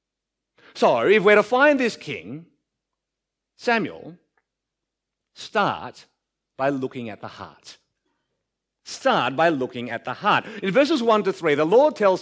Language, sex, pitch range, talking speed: English, male, 145-235 Hz, 140 wpm